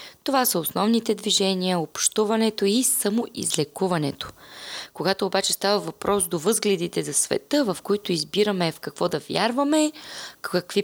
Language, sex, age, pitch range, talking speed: Bulgarian, female, 20-39, 180-235 Hz, 125 wpm